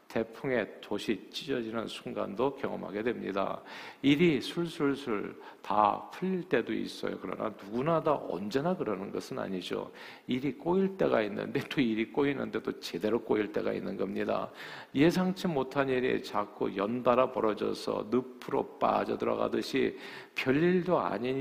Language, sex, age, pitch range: Korean, male, 50-69, 110-140 Hz